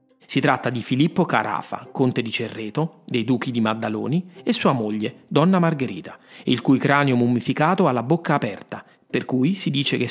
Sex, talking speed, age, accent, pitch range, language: male, 180 wpm, 40-59, native, 115-155 Hz, Italian